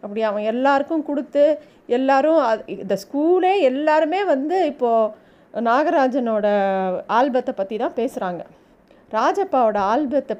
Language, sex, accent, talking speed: Tamil, female, native, 100 wpm